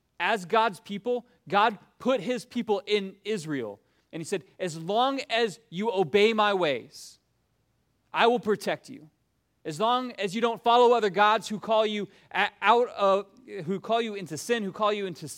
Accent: American